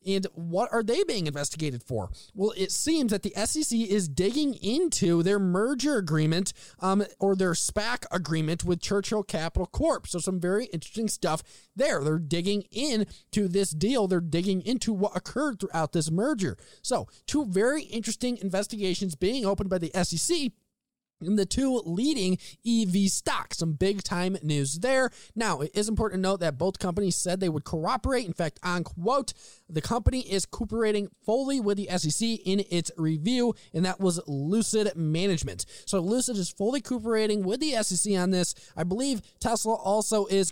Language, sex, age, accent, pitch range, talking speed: English, male, 20-39, American, 175-220 Hz, 170 wpm